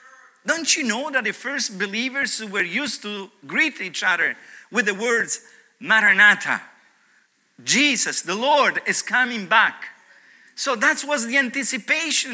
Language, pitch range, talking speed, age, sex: English, 205-275 Hz, 135 wpm, 50-69, male